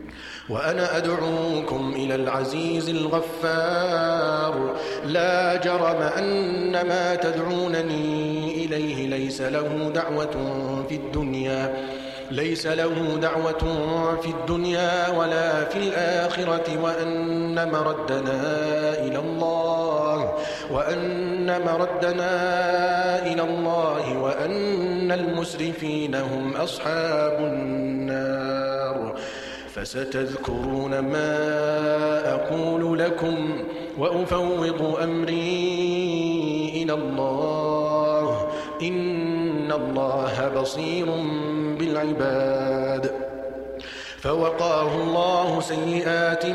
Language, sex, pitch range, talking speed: Arabic, male, 150-175 Hz, 65 wpm